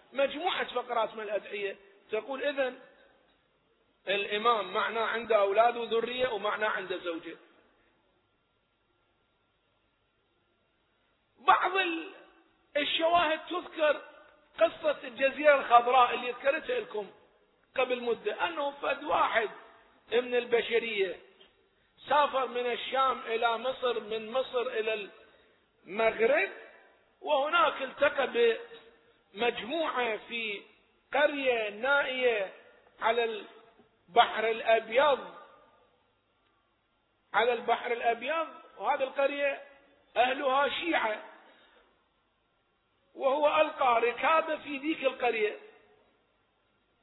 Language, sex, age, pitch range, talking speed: Arabic, male, 50-69, 235-310 Hz, 80 wpm